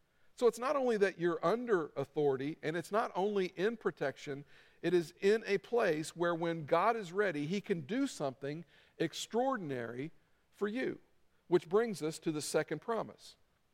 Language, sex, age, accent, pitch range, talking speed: English, male, 50-69, American, 155-220 Hz, 165 wpm